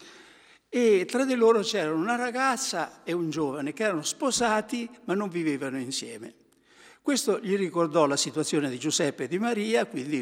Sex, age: male, 60-79